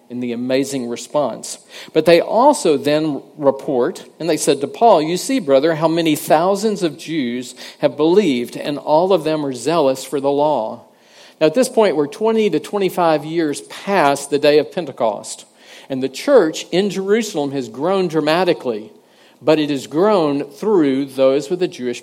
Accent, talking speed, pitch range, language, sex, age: American, 175 wpm, 140-190 Hz, English, male, 50-69